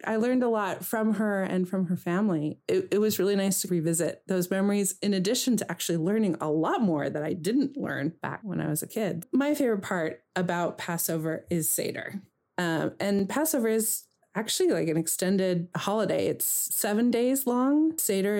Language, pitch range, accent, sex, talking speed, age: English, 170-220 Hz, American, female, 190 wpm, 30-49